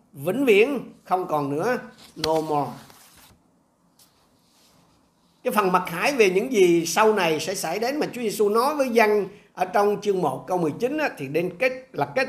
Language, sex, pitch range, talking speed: Vietnamese, male, 160-215 Hz, 180 wpm